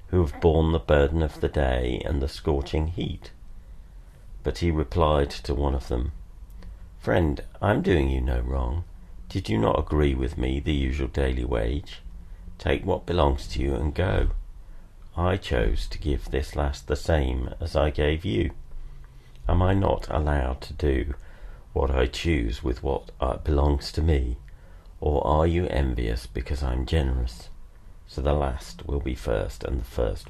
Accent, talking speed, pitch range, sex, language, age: British, 170 wpm, 70-85 Hz, male, English, 50-69